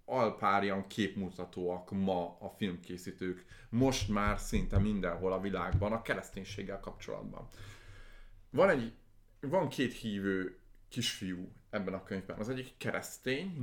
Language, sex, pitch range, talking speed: Hungarian, male, 95-120 Hz, 120 wpm